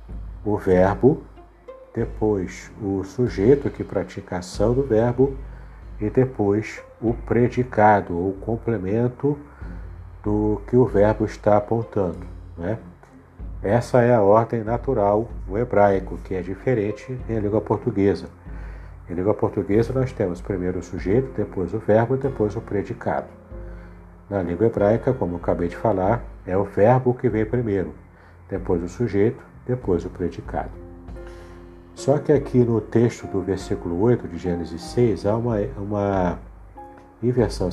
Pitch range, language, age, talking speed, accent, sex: 90-120 Hz, Portuguese, 50-69, 135 wpm, Brazilian, male